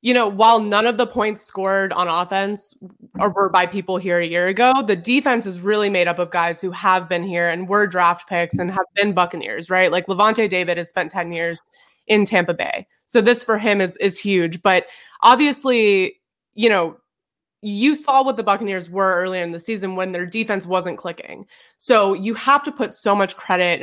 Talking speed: 210 wpm